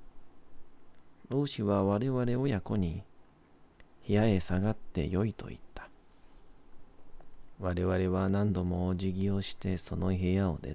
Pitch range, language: 85-100 Hz, Japanese